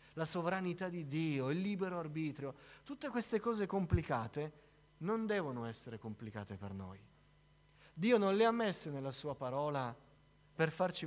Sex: male